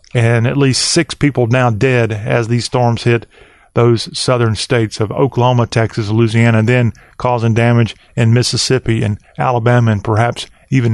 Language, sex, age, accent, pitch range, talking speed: English, male, 40-59, American, 120-140 Hz, 160 wpm